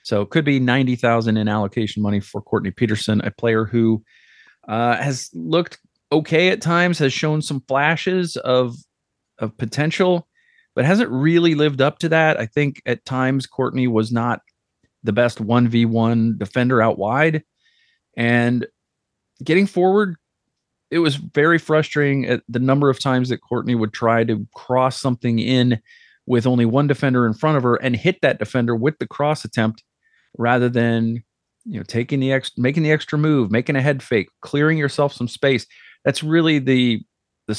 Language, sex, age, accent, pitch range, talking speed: English, male, 30-49, American, 115-150 Hz, 170 wpm